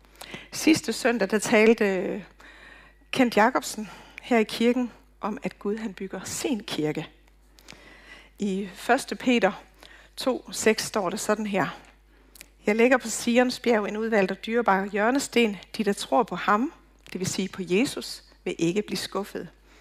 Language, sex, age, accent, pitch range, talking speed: Danish, female, 60-79, native, 185-235 Hz, 140 wpm